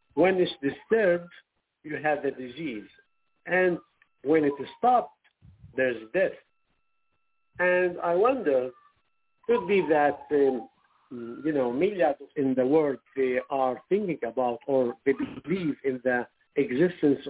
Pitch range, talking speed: 135-180 Hz, 130 wpm